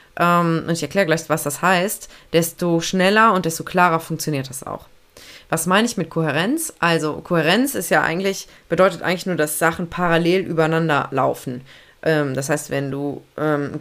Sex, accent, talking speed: female, German, 150 wpm